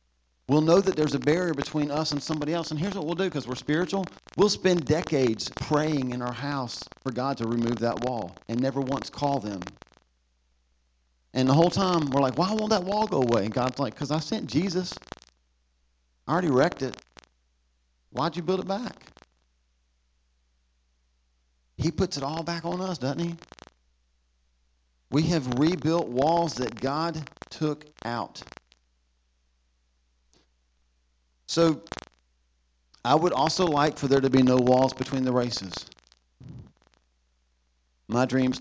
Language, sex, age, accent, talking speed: English, male, 40-59, American, 150 wpm